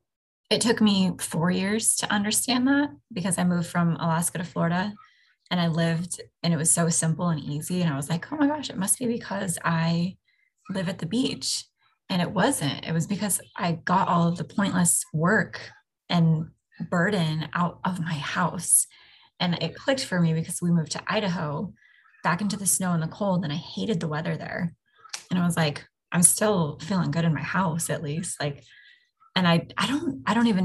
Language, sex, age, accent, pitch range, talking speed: English, female, 20-39, American, 160-195 Hz, 205 wpm